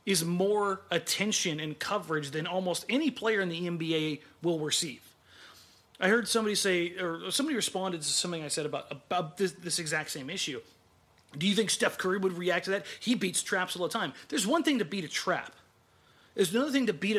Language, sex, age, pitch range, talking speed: English, male, 30-49, 175-240 Hz, 205 wpm